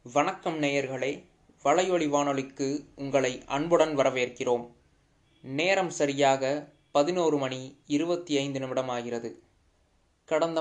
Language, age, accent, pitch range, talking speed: Tamil, 20-39, native, 125-150 Hz, 85 wpm